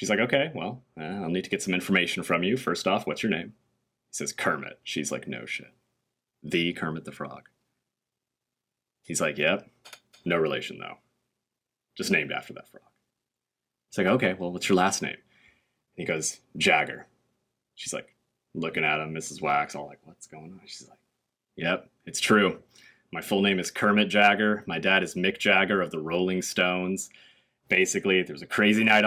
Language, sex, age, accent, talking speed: English, male, 30-49, American, 180 wpm